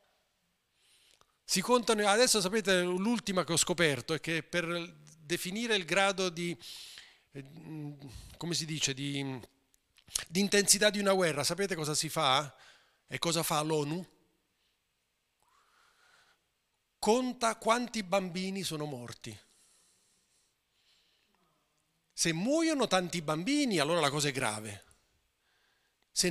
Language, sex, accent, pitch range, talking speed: Italian, male, native, 140-220 Hz, 105 wpm